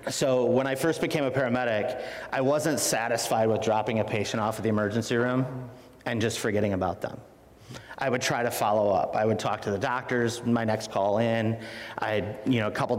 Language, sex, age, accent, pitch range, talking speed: English, male, 30-49, American, 110-125 Hz, 210 wpm